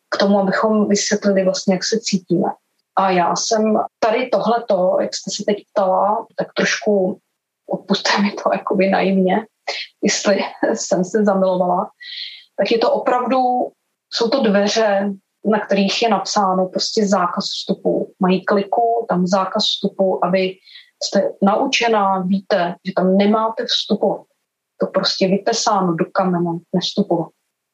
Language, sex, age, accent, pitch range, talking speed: Czech, female, 20-39, native, 190-225 Hz, 135 wpm